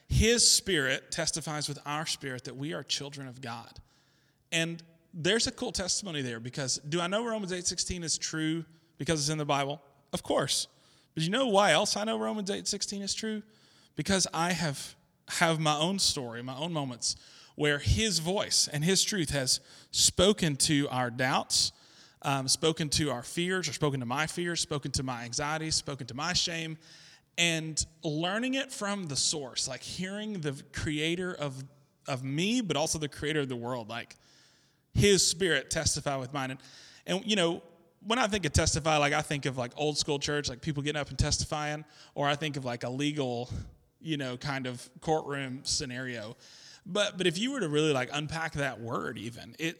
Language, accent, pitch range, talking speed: English, American, 140-175 Hz, 190 wpm